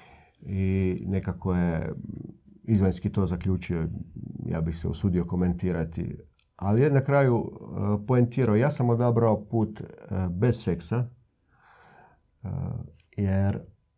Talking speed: 95 wpm